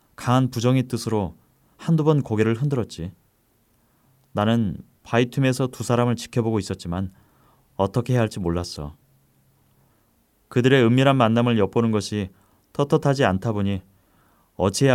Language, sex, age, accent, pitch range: Korean, male, 30-49, native, 95-120 Hz